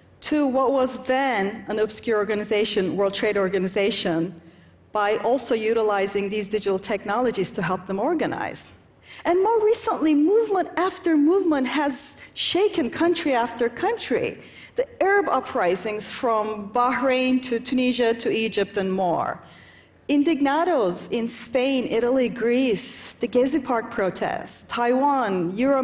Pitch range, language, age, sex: 215-315 Hz, Chinese, 40-59, female